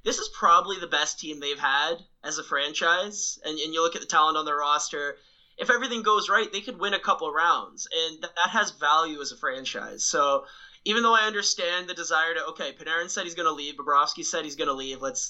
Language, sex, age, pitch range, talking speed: English, male, 20-39, 150-180 Hz, 245 wpm